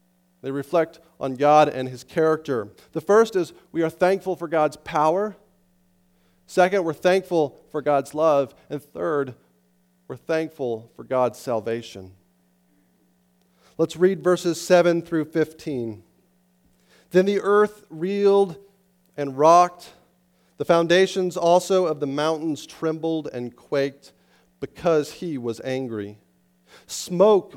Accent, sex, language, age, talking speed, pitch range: American, male, English, 40-59, 120 wpm, 120-165 Hz